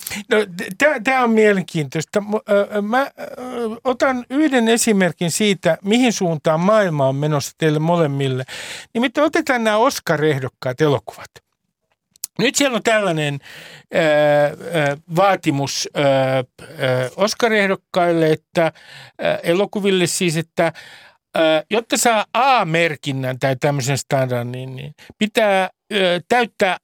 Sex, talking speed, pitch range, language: male, 90 wpm, 145-215 Hz, Finnish